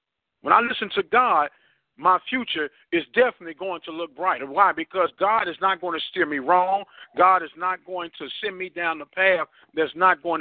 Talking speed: 210 wpm